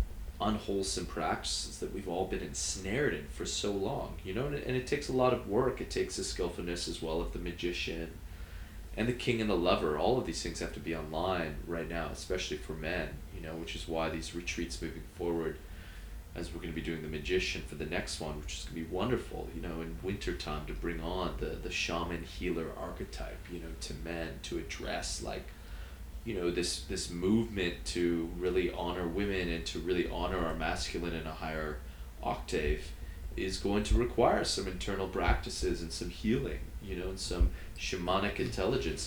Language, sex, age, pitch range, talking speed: English, male, 20-39, 80-95 Hz, 200 wpm